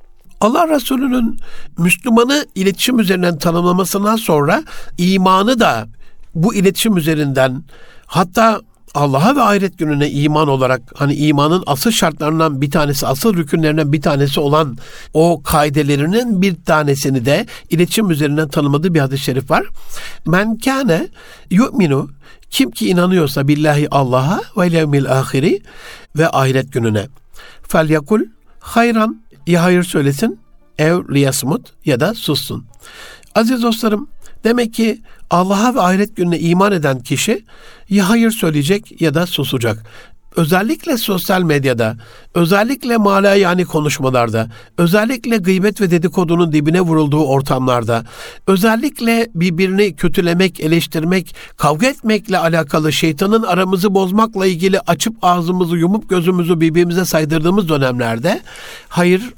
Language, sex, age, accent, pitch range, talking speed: Turkish, male, 60-79, native, 150-200 Hz, 115 wpm